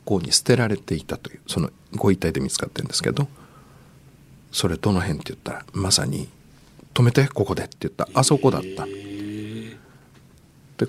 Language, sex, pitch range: Japanese, male, 105-150 Hz